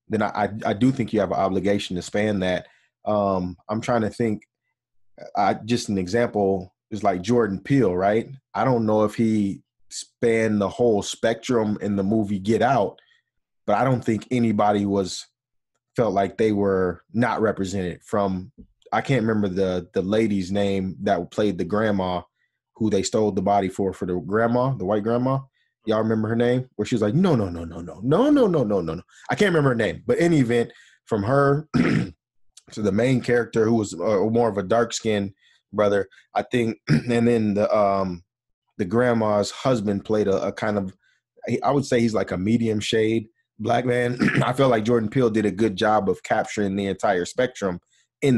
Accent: American